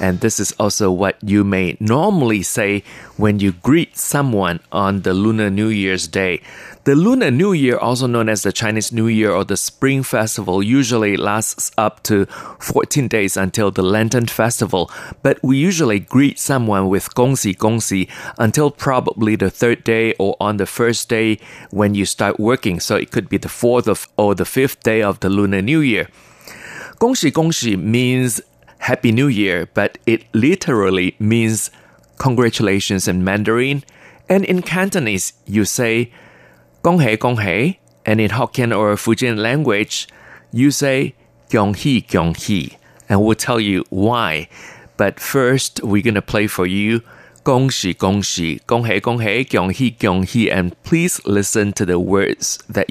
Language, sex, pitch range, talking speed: English, male, 100-120 Hz, 155 wpm